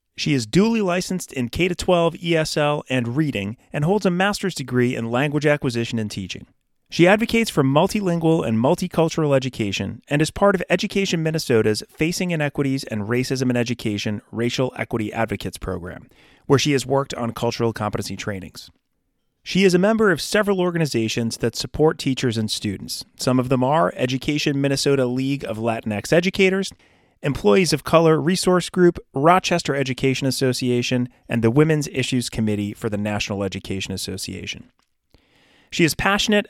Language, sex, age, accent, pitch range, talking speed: English, male, 30-49, American, 115-160 Hz, 155 wpm